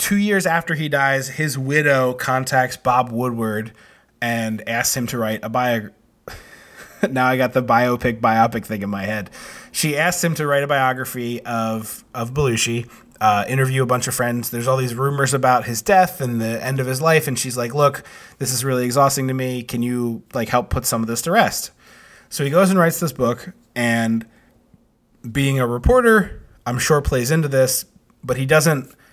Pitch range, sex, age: 120-140 Hz, male, 20-39